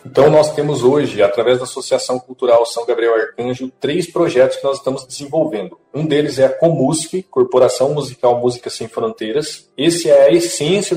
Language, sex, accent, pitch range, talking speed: Portuguese, male, Brazilian, 130-180 Hz, 170 wpm